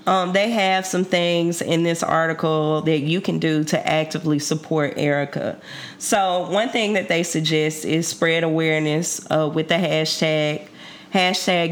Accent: American